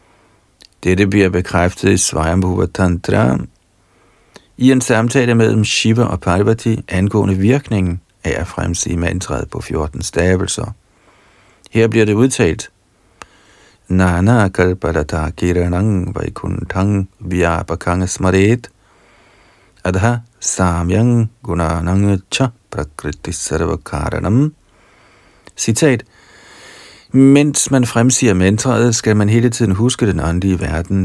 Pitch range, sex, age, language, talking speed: 90-115 Hz, male, 50-69, Danish, 125 wpm